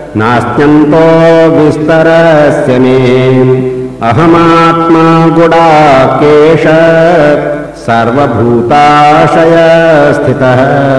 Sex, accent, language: male, native, Hindi